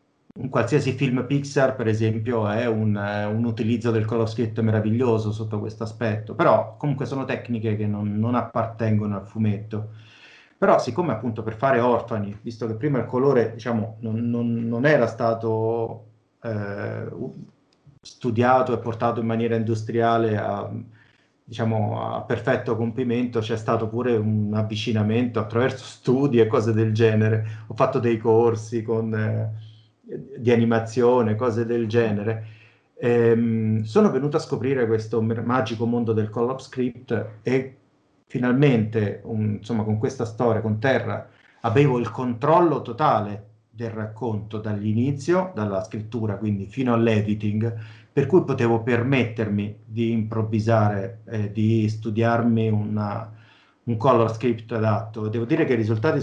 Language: Italian